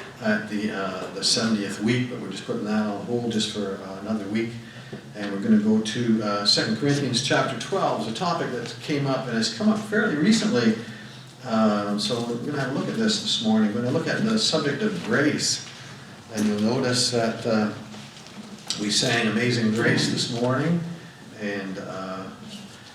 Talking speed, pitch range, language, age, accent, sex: 200 wpm, 105-125 Hz, English, 50-69, American, male